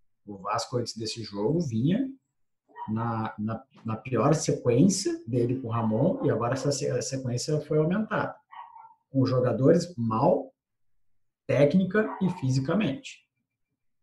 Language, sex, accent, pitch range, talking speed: Portuguese, male, Brazilian, 125-170 Hz, 115 wpm